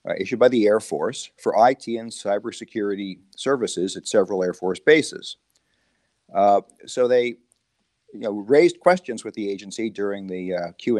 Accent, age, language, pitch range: American, 50-69, English, 100-130 Hz